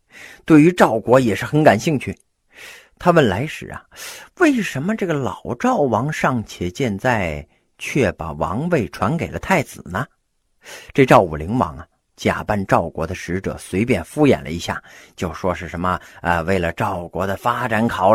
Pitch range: 95-150 Hz